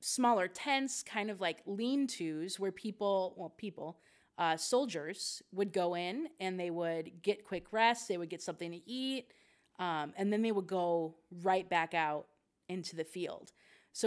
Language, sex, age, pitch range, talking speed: English, female, 30-49, 175-225 Hz, 170 wpm